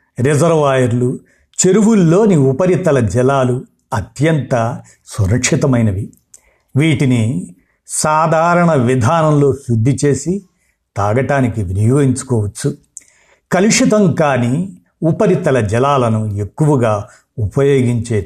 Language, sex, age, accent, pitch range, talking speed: Telugu, male, 50-69, native, 120-160 Hz, 60 wpm